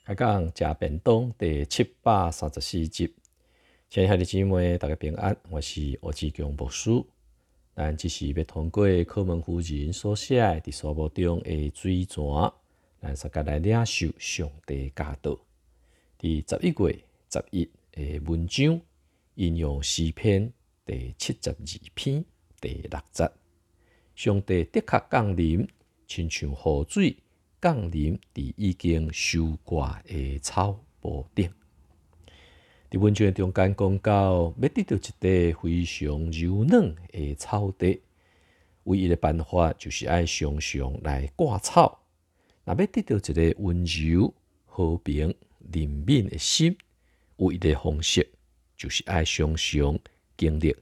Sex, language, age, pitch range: male, Chinese, 50-69, 75-95 Hz